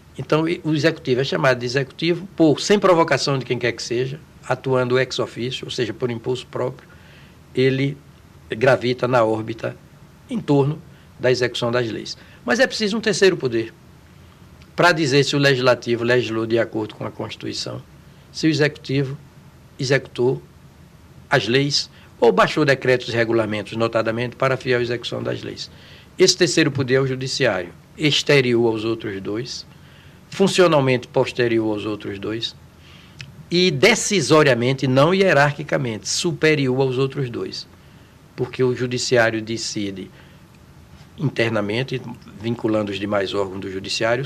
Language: Portuguese